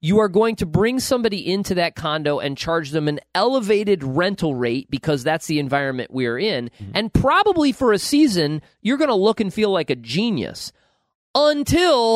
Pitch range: 155-220 Hz